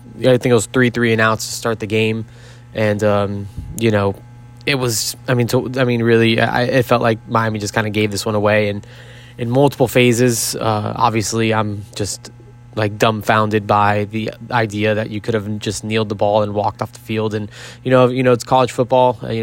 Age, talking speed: 20-39, 215 wpm